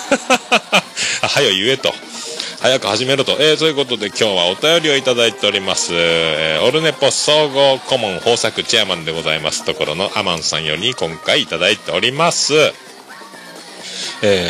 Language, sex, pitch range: Japanese, male, 120-170 Hz